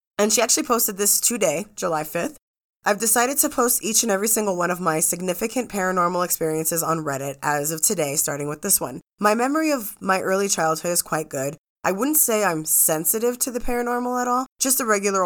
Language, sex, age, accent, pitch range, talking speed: English, female, 20-39, American, 165-215 Hz, 210 wpm